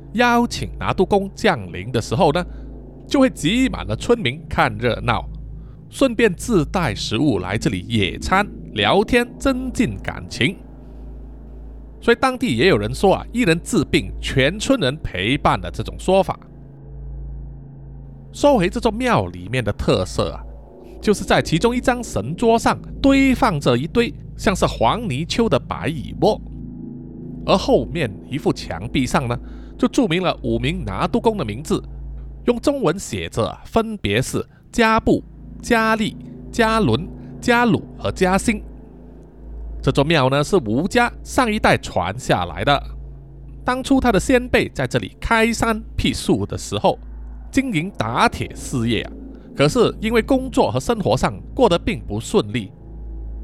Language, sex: Chinese, male